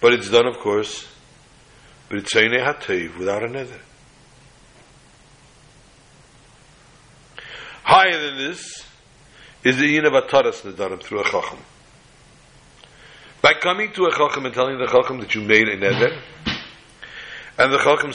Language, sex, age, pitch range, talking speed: English, male, 60-79, 120-145 Hz, 130 wpm